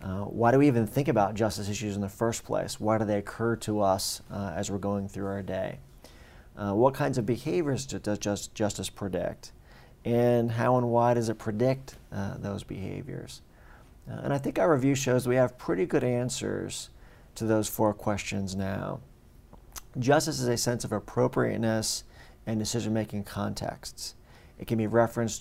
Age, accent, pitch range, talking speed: 40-59, American, 100-120 Hz, 175 wpm